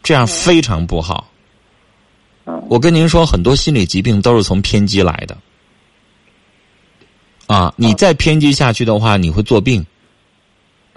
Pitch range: 95-135 Hz